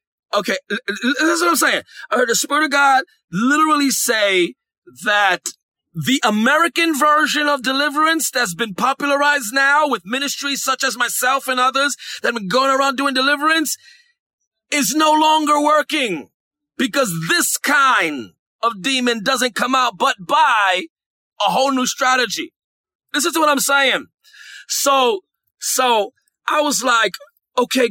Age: 30-49